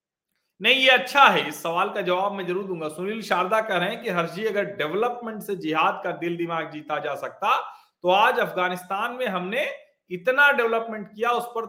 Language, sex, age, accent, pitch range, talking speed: Hindi, male, 40-59, native, 180-265 Hz, 195 wpm